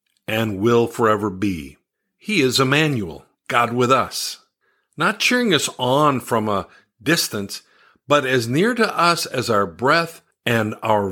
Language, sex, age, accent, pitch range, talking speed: English, male, 50-69, American, 110-145 Hz, 145 wpm